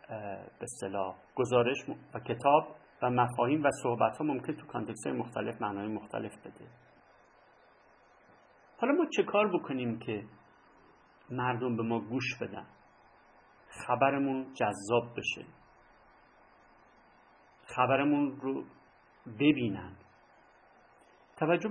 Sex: male